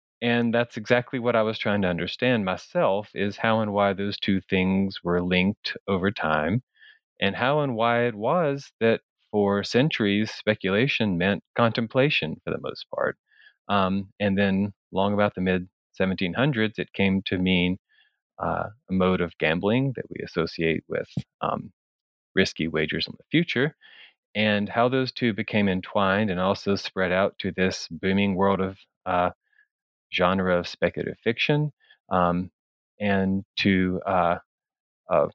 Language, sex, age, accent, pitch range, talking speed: English, male, 30-49, American, 95-115 Hz, 150 wpm